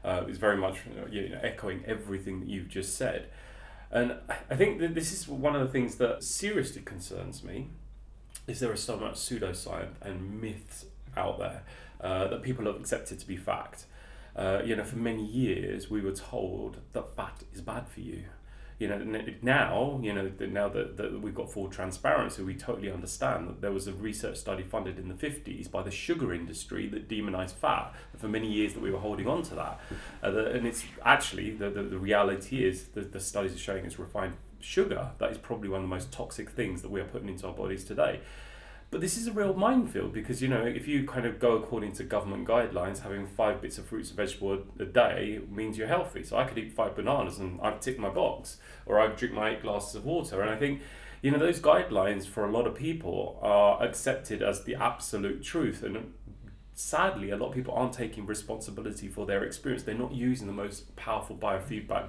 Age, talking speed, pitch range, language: 30-49, 215 wpm, 100-125 Hz, English